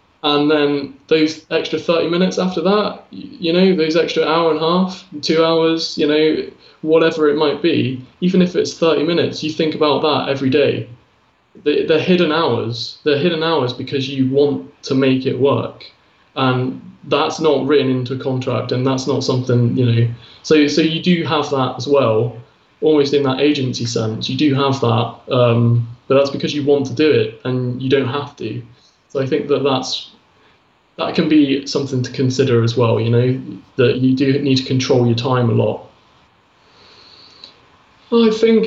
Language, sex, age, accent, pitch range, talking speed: English, male, 20-39, British, 130-160 Hz, 185 wpm